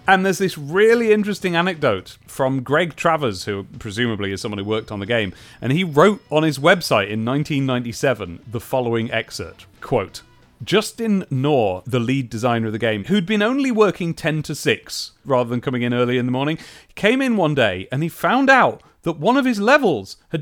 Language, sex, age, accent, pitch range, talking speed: English, male, 30-49, British, 120-185 Hz, 195 wpm